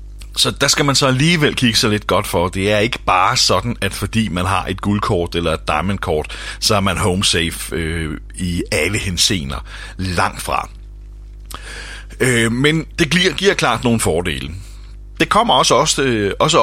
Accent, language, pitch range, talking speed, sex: native, Danish, 100-125 Hz, 165 wpm, male